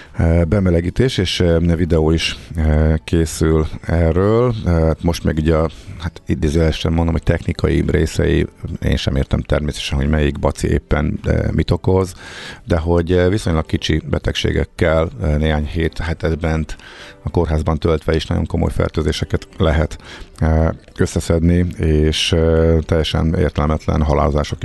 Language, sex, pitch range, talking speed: Hungarian, male, 80-90 Hz, 115 wpm